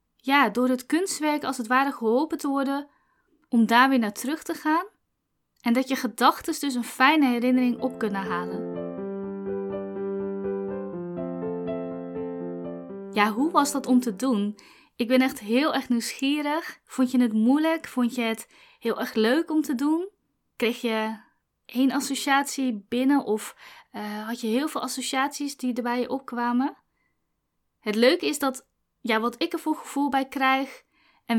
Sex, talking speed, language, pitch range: female, 155 wpm, Dutch, 225-275 Hz